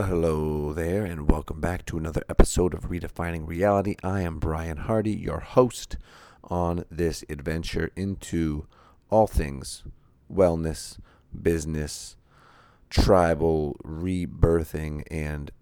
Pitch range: 80-95 Hz